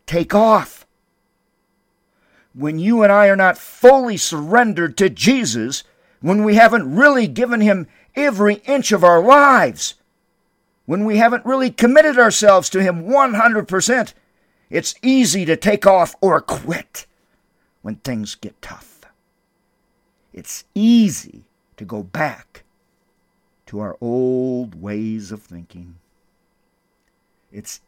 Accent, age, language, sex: American, 50-69, English, male